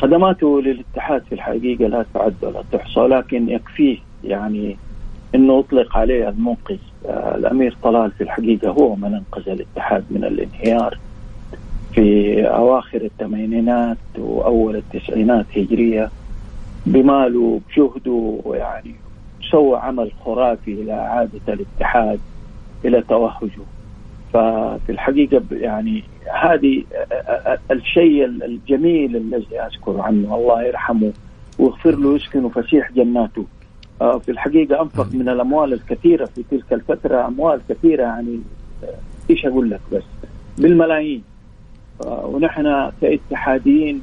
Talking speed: 100 wpm